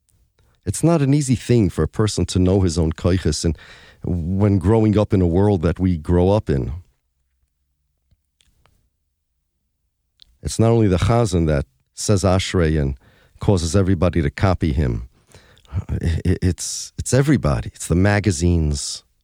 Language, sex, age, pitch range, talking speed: English, male, 40-59, 80-125 Hz, 135 wpm